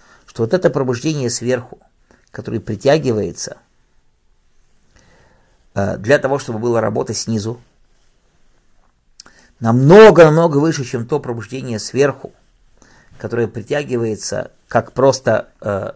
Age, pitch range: 50-69, 110-135 Hz